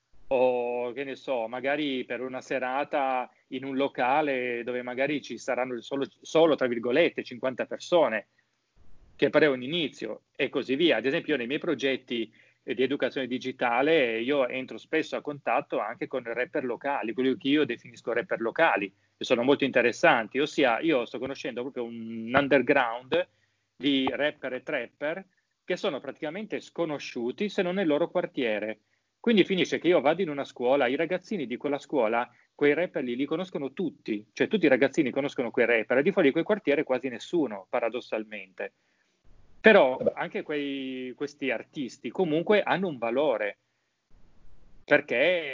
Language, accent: Italian, native